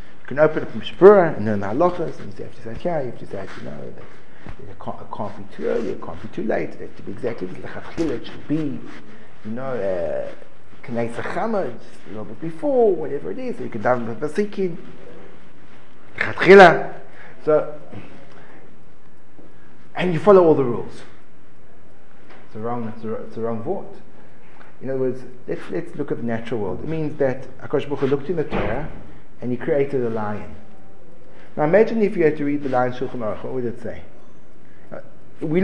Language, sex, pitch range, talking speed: English, male, 125-180 Hz, 190 wpm